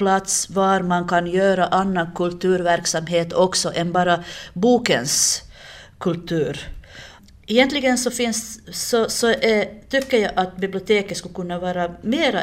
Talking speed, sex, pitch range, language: 125 wpm, female, 160-195 Hz, Finnish